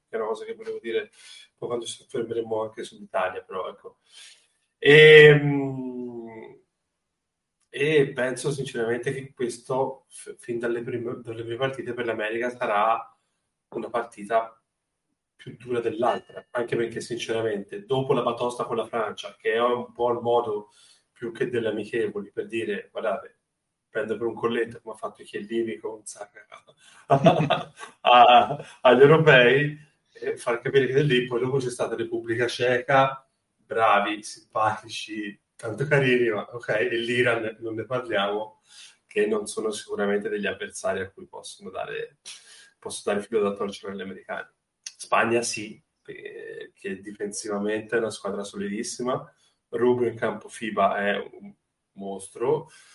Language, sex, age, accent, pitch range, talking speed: Italian, male, 20-39, native, 115-155 Hz, 140 wpm